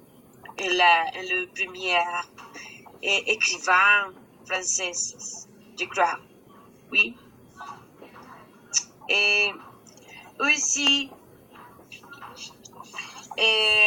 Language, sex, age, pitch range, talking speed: Spanish, female, 30-49, 195-230 Hz, 50 wpm